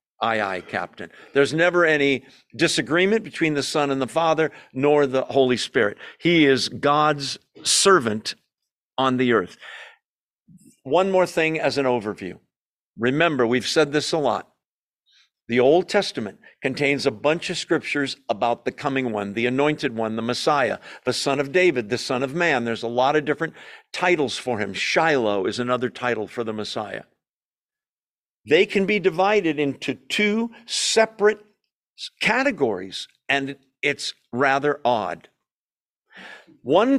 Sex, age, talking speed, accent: male, 50-69, 145 wpm, American